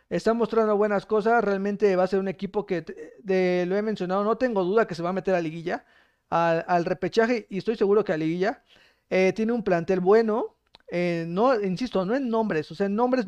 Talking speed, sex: 225 wpm, male